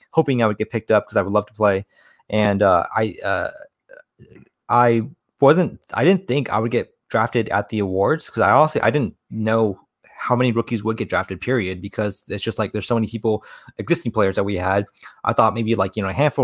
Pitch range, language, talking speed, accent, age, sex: 100-110 Hz, English, 225 wpm, American, 20-39, male